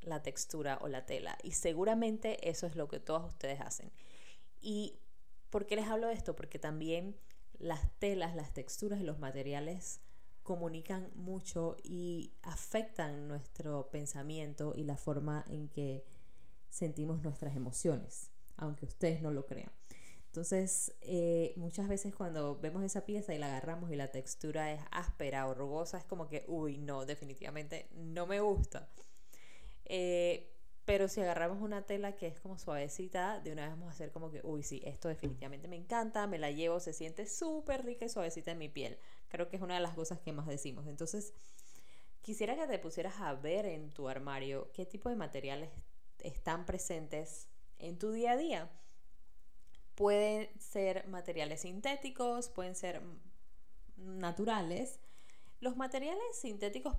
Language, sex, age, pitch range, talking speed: Spanish, female, 10-29, 150-195 Hz, 160 wpm